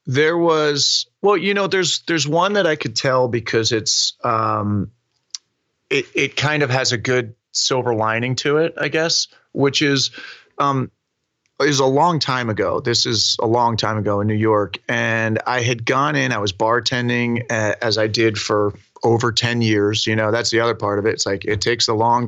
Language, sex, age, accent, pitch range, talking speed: English, male, 30-49, American, 110-130 Hz, 200 wpm